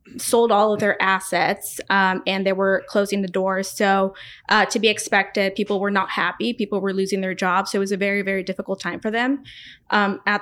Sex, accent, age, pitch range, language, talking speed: female, American, 20-39, 195-220 Hz, English, 220 wpm